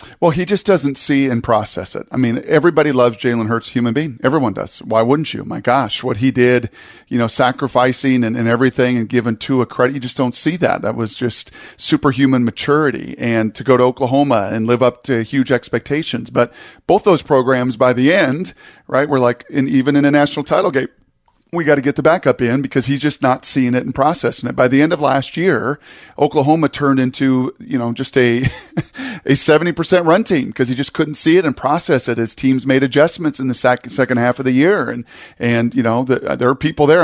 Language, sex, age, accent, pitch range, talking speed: English, male, 40-59, American, 125-150 Hz, 220 wpm